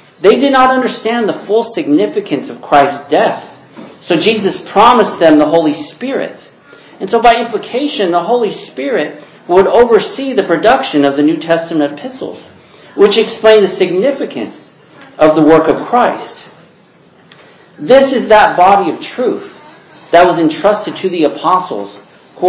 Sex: male